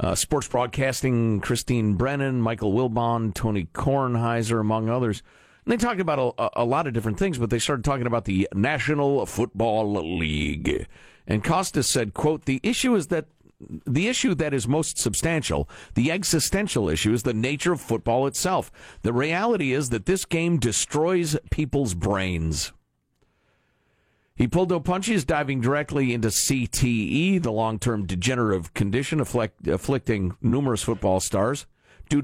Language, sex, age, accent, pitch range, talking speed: English, male, 50-69, American, 105-150 Hz, 145 wpm